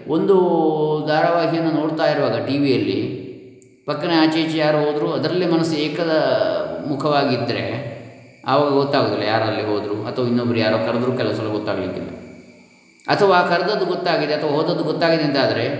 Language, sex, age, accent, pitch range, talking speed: Kannada, male, 30-49, native, 105-155 Hz, 115 wpm